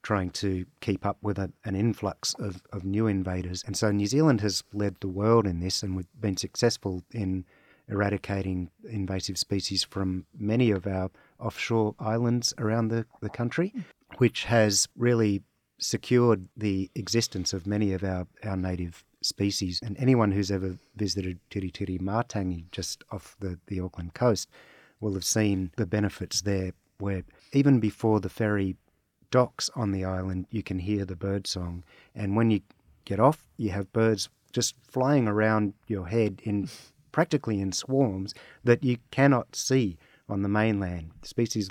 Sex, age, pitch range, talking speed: male, 30-49, 95-110 Hz, 160 wpm